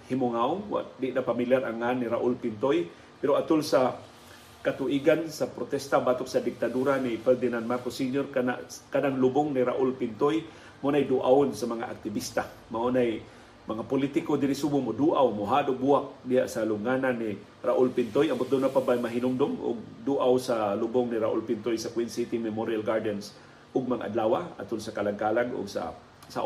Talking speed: 165 wpm